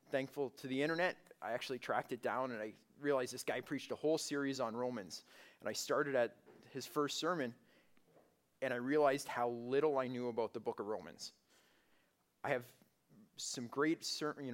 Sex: male